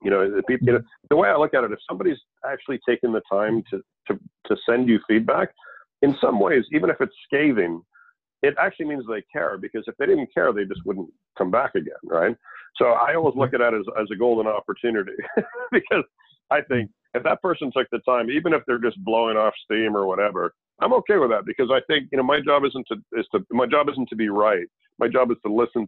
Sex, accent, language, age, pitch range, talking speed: male, American, English, 50-69, 105-130 Hz, 230 wpm